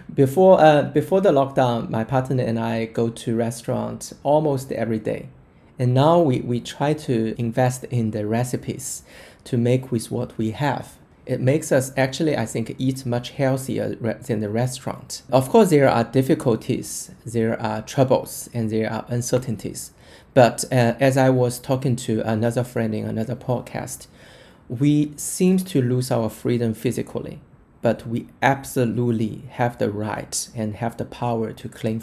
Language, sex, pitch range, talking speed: English, male, 115-135 Hz, 165 wpm